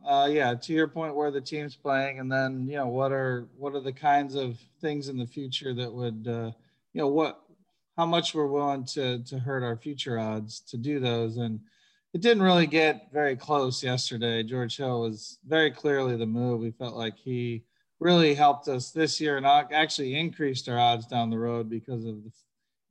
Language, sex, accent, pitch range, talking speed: English, male, American, 115-145 Hz, 205 wpm